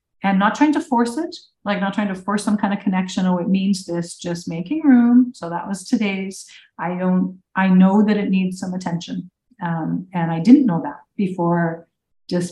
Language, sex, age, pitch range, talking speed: English, female, 40-59, 160-200 Hz, 205 wpm